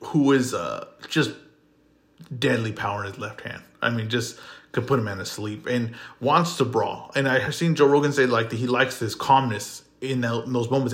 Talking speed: 225 wpm